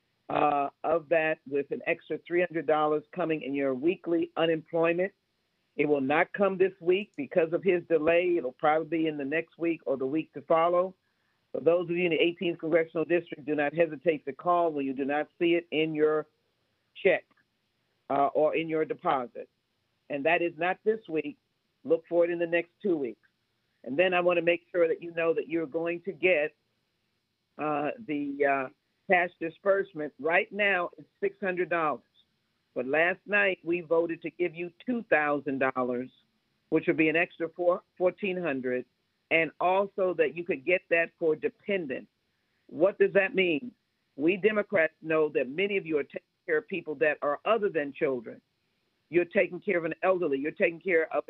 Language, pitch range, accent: English, 150-180 Hz, American